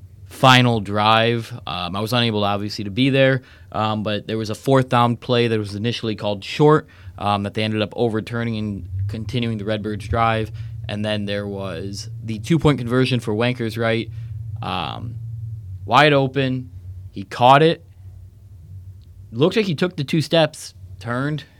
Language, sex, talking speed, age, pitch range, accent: English, male, 165 wpm, 20-39, 100-120 Hz, American